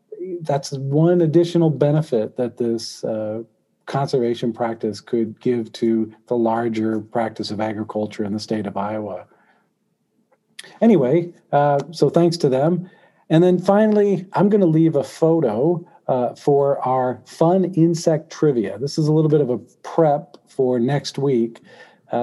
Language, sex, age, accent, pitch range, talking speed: English, male, 40-59, American, 120-160 Hz, 150 wpm